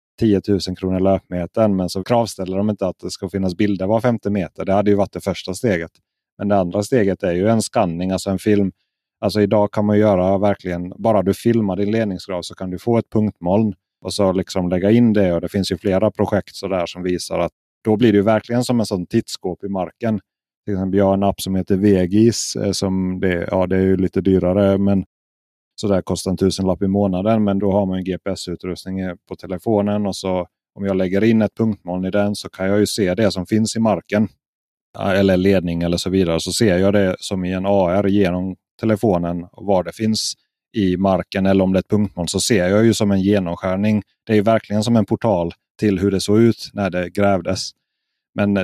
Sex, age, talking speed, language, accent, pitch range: male, 30-49, 225 wpm, Swedish, native, 95-105 Hz